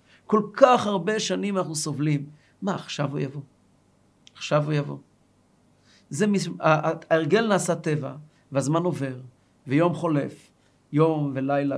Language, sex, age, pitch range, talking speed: Hebrew, male, 40-59, 140-210 Hz, 120 wpm